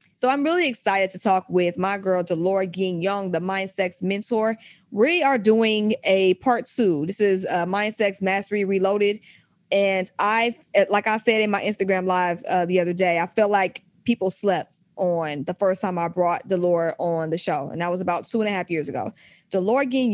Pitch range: 180-210 Hz